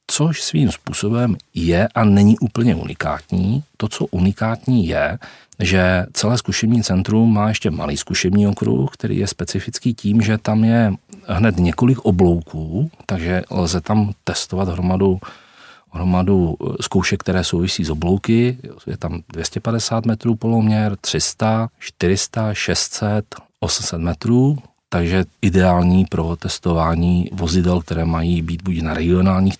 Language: Czech